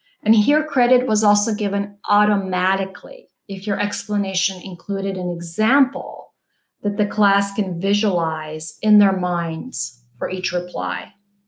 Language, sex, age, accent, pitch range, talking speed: English, female, 40-59, American, 195-230 Hz, 125 wpm